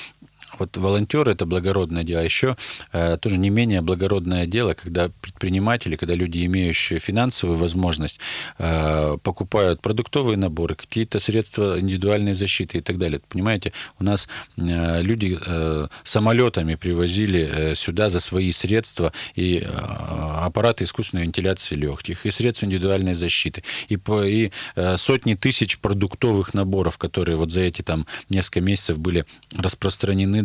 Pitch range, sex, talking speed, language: 85-105 Hz, male, 130 wpm, Russian